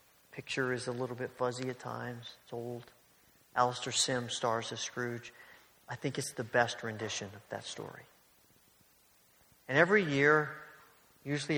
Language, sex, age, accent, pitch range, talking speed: English, male, 40-59, American, 125-155 Hz, 145 wpm